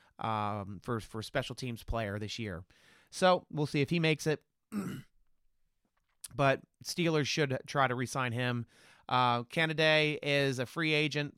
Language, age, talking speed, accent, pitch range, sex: English, 30-49, 150 wpm, American, 115-145 Hz, male